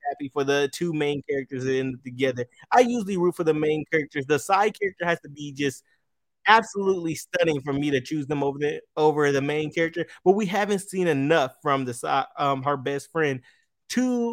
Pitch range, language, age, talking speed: 140-185 Hz, English, 20-39, 205 wpm